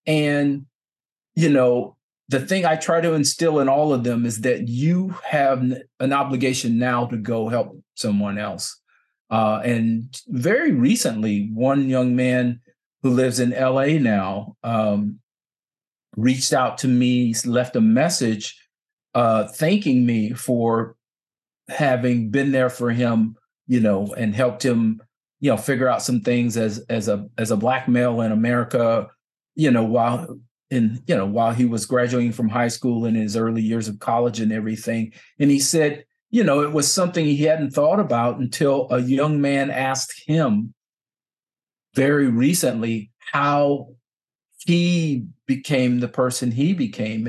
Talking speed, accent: 155 wpm, American